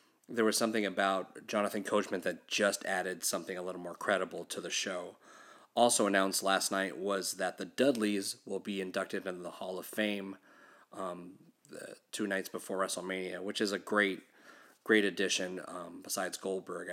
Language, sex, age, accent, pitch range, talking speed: English, male, 30-49, American, 95-105 Hz, 170 wpm